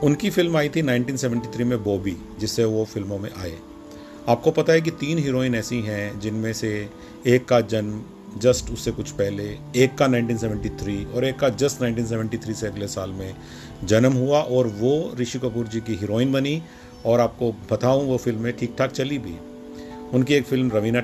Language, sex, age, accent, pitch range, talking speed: Hindi, male, 40-59, native, 105-130 Hz, 185 wpm